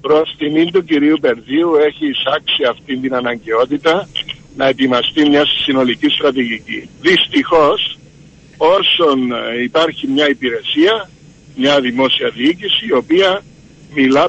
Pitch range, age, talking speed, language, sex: 150-200 Hz, 60-79, 115 wpm, Greek, male